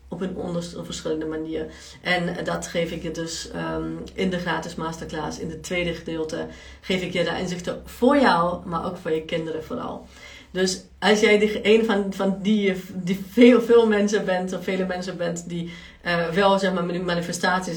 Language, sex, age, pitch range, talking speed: Dutch, female, 40-59, 165-195 Hz, 200 wpm